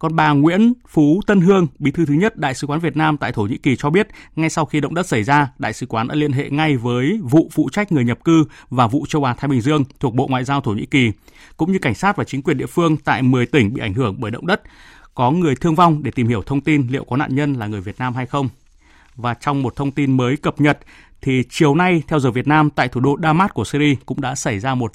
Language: Vietnamese